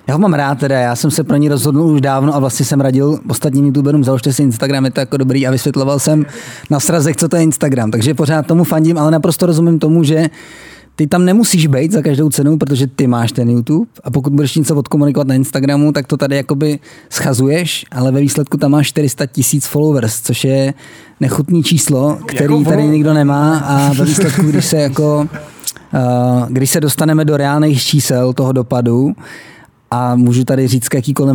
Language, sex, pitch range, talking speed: Czech, male, 130-150 Hz, 195 wpm